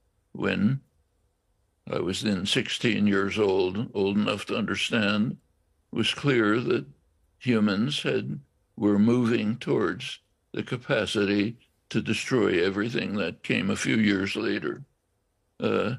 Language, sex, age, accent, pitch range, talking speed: English, male, 60-79, American, 100-120 Hz, 120 wpm